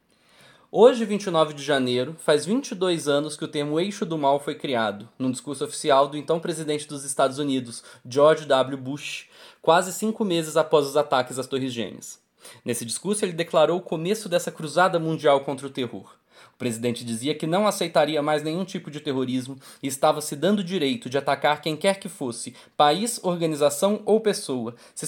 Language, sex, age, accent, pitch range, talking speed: Portuguese, male, 20-39, Brazilian, 135-180 Hz, 180 wpm